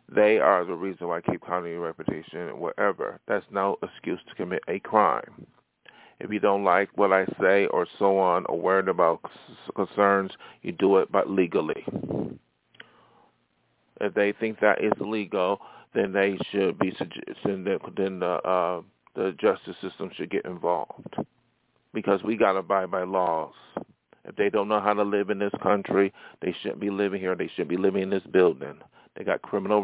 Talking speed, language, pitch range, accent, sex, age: 185 wpm, English, 90-105 Hz, American, male, 40-59